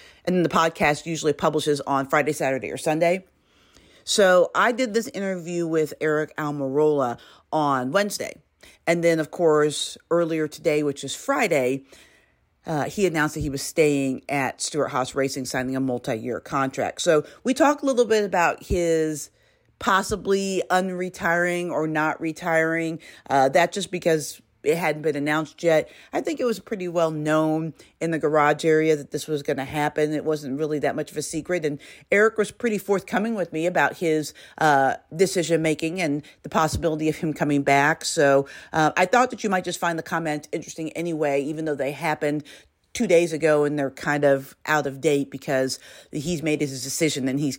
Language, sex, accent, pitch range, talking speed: English, female, American, 145-175 Hz, 185 wpm